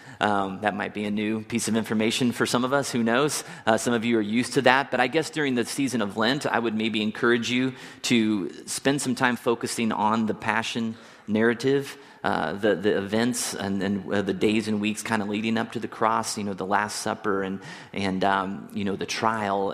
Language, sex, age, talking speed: English, male, 30-49, 230 wpm